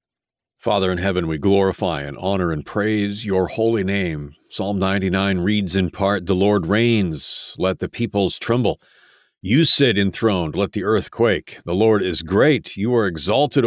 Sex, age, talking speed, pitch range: male, 50-69, 165 wpm, 90-105 Hz